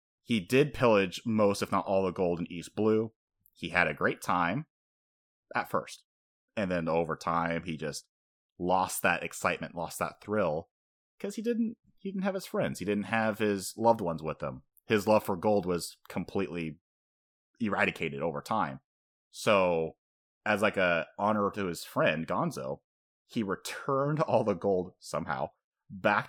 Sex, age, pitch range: male, 30-49, 85-110 Hz